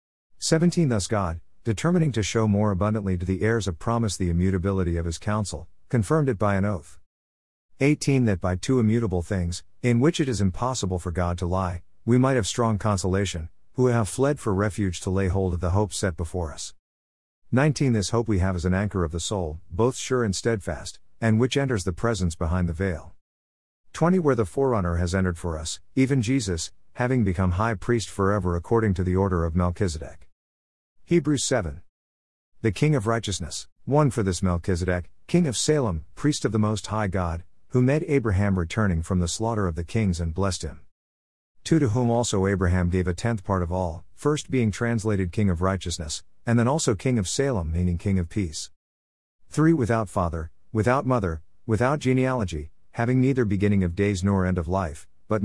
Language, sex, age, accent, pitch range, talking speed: English, male, 50-69, American, 85-115 Hz, 190 wpm